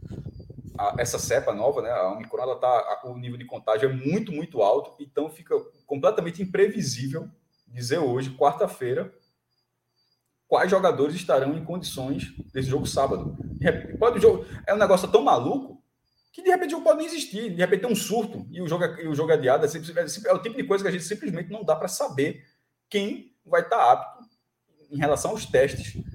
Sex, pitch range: male, 130-200 Hz